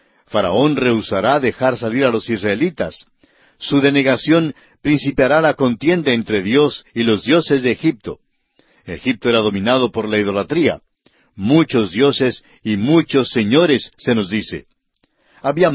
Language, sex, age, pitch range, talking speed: Spanish, male, 60-79, 110-145 Hz, 130 wpm